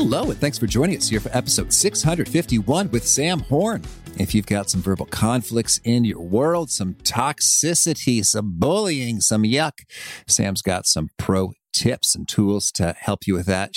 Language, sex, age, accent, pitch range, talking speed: English, male, 40-59, American, 100-140 Hz, 175 wpm